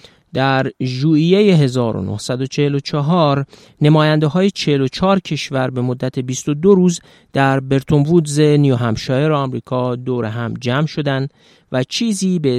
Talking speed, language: 115 wpm, Persian